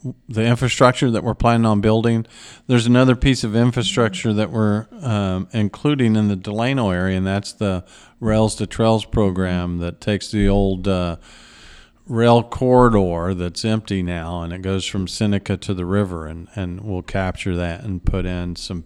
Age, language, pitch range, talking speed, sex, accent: 50-69, English, 95-115 Hz, 170 wpm, male, American